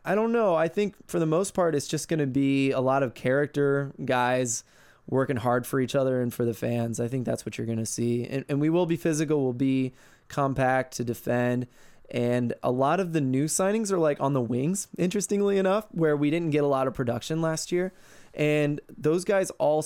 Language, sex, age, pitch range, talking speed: English, male, 20-39, 125-150 Hz, 225 wpm